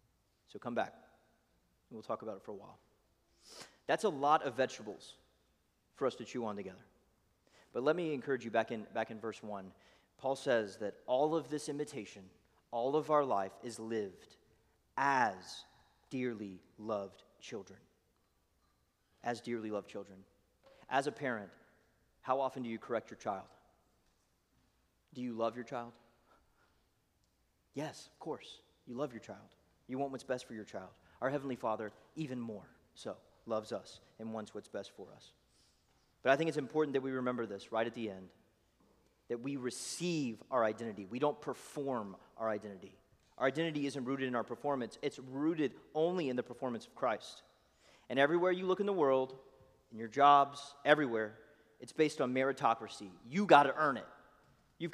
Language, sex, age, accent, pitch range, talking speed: English, male, 30-49, American, 110-145 Hz, 170 wpm